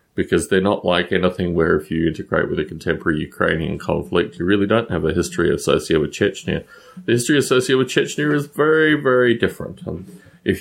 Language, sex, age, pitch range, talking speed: English, male, 30-49, 90-140 Hz, 190 wpm